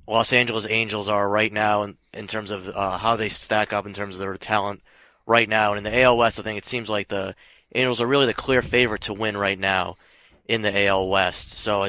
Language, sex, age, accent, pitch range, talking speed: English, male, 20-39, American, 105-115 Hz, 245 wpm